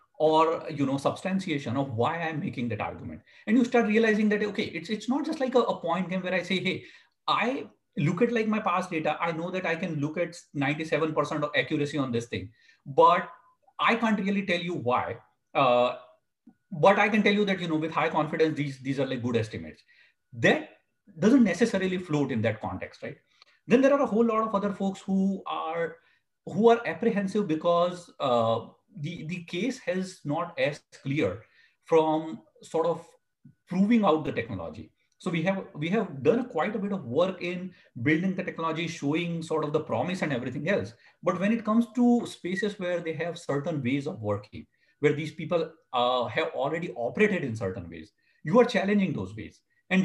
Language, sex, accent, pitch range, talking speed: English, male, Indian, 150-205 Hz, 200 wpm